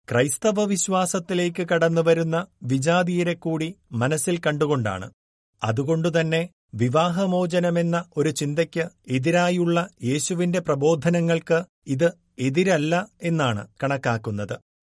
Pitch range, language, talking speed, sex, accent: 135-175 Hz, Malayalam, 70 wpm, male, native